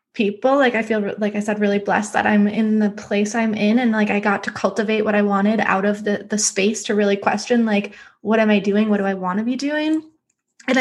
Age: 20-39